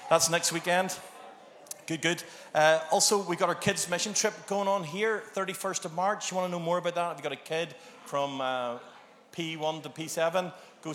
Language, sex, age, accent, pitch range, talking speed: English, male, 30-49, Irish, 135-175 Hz, 205 wpm